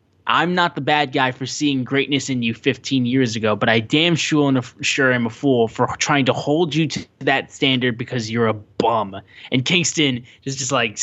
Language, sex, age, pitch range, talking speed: English, male, 10-29, 120-145 Hz, 205 wpm